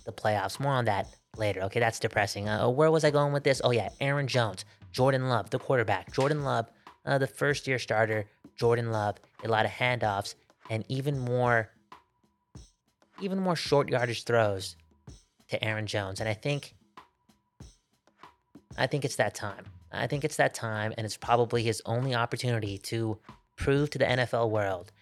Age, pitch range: 20-39, 105-125 Hz